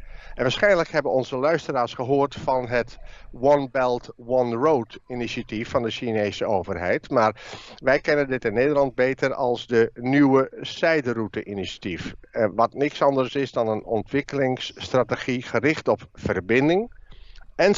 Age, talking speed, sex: 50-69, 135 wpm, male